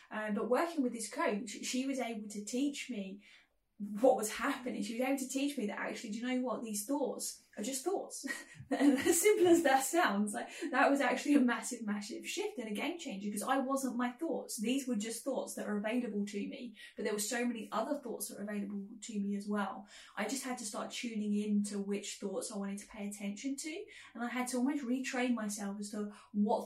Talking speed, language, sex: 230 wpm, English, female